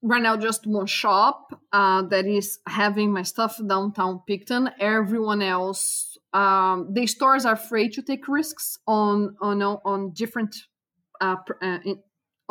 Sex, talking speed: female, 135 wpm